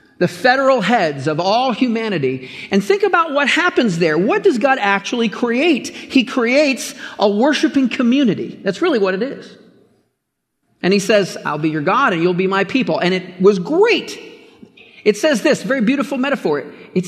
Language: English